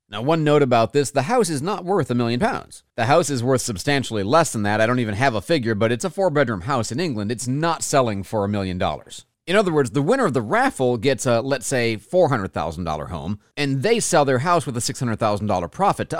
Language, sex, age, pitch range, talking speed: English, male, 40-59, 110-145 Hz, 240 wpm